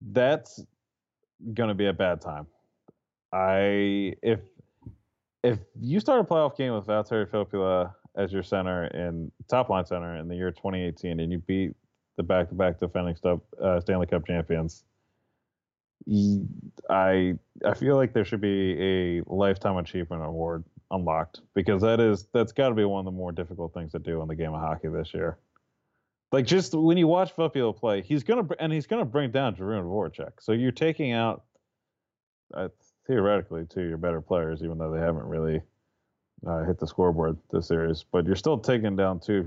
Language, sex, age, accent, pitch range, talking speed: English, male, 30-49, American, 85-110 Hz, 175 wpm